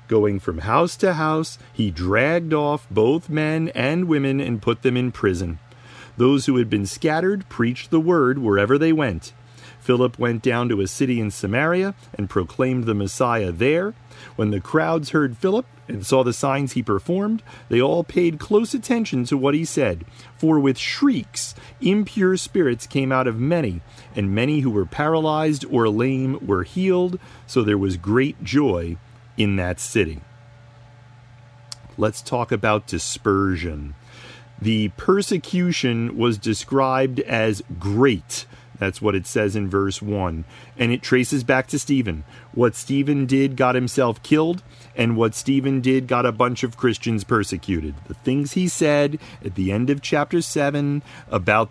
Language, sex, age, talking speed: English, male, 40-59, 160 wpm